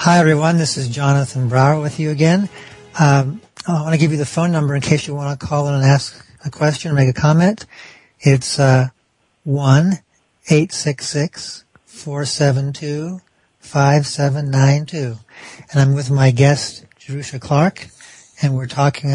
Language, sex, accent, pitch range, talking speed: English, male, American, 135-155 Hz, 145 wpm